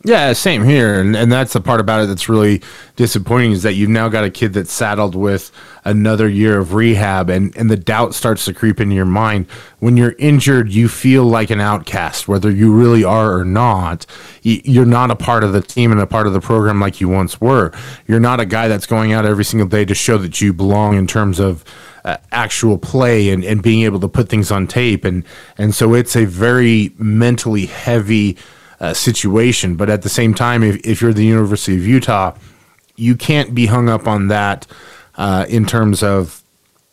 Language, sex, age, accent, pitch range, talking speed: English, male, 20-39, American, 100-115 Hz, 215 wpm